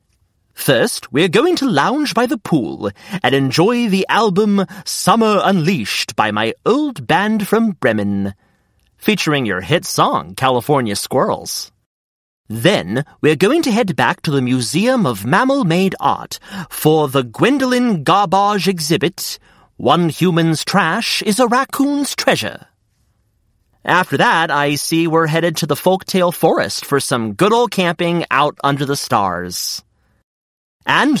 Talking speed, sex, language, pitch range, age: 135 wpm, male, English, 135-200 Hz, 30-49